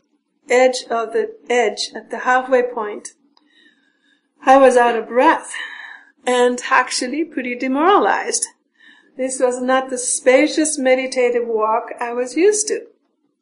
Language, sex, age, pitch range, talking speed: English, female, 50-69, 235-295 Hz, 125 wpm